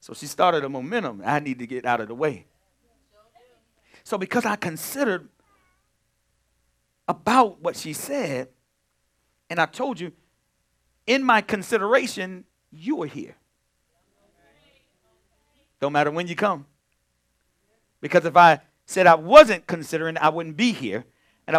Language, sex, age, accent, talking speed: English, male, 50-69, American, 135 wpm